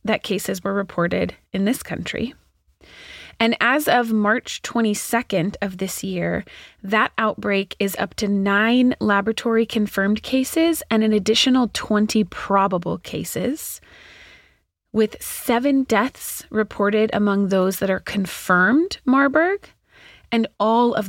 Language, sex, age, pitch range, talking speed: English, female, 30-49, 185-230 Hz, 120 wpm